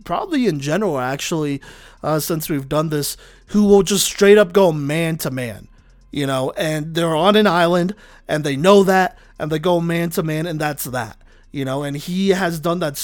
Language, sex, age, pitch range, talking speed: English, male, 30-49, 145-190 Hz, 205 wpm